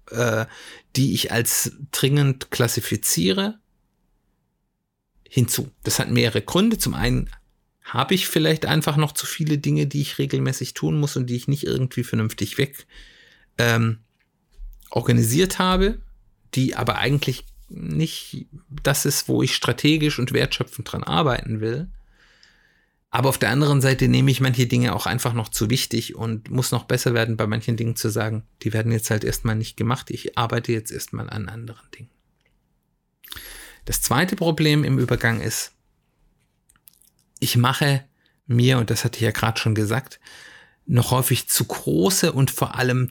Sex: male